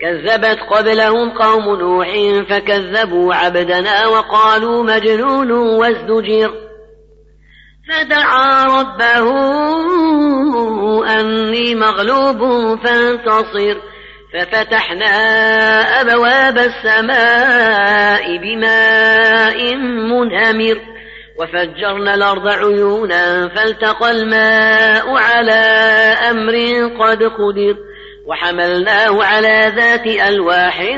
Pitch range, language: 215-235 Hz, Arabic